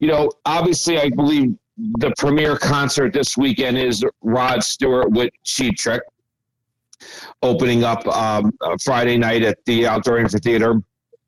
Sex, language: male, English